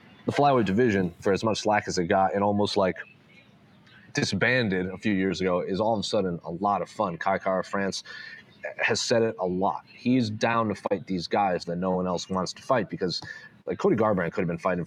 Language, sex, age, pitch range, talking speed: English, male, 30-49, 90-110 Hz, 225 wpm